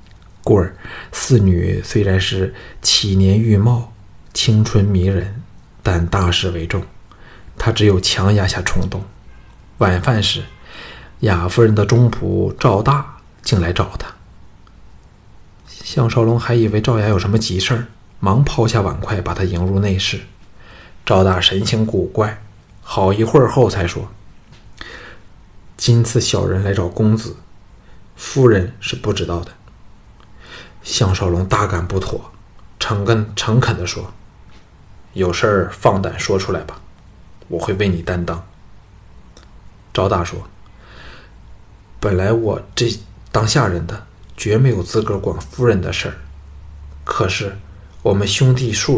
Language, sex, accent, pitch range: Chinese, male, native, 95-110 Hz